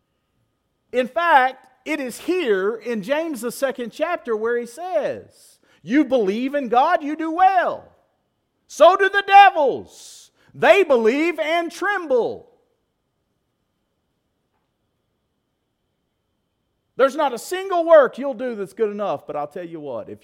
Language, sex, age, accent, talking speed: English, male, 40-59, American, 130 wpm